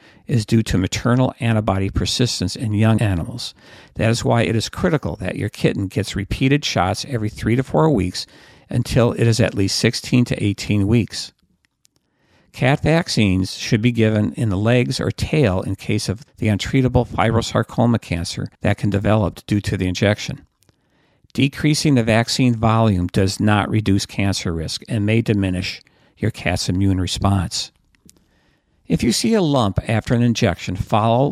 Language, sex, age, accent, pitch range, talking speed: English, male, 50-69, American, 100-125 Hz, 160 wpm